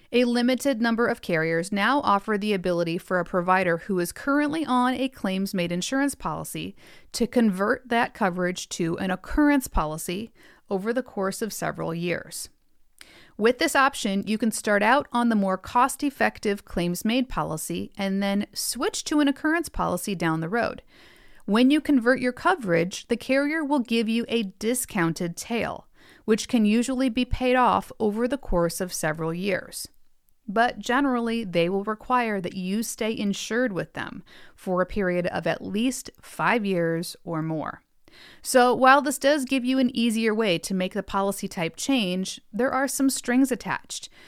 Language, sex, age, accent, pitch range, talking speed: English, female, 40-59, American, 190-255 Hz, 165 wpm